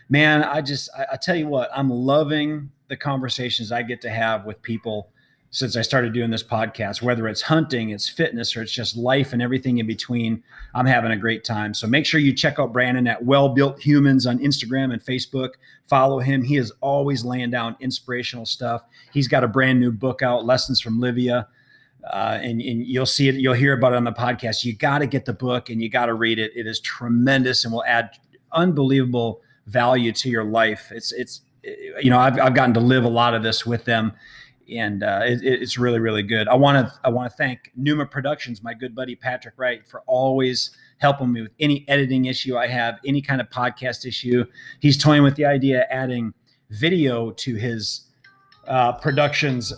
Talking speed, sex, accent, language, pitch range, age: 210 wpm, male, American, English, 120-135 Hz, 30-49